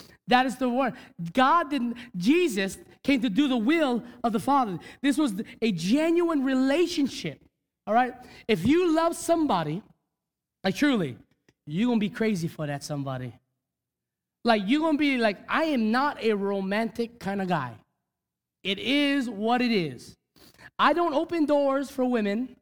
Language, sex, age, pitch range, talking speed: English, male, 20-39, 205-305 Hz, 160 wpm